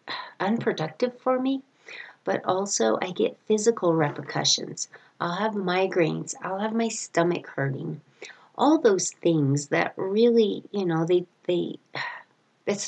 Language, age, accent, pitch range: English, 40-59, American, 160-210 Hz